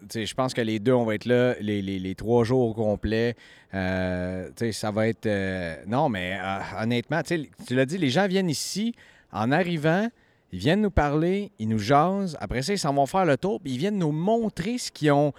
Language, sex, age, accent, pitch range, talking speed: French, male, 40-59, Canadian, 115-180 Hz, 230 wpm